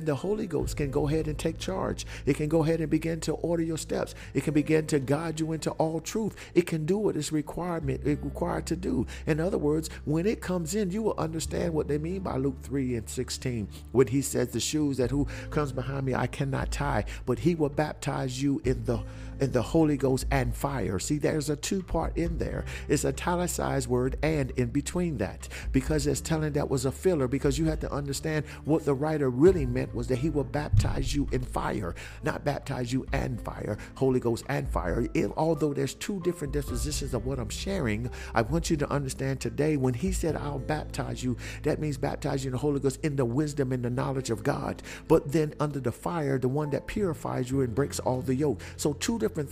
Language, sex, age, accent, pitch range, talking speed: English, male, 50-69, American, 130-155 Hz, 225 wpm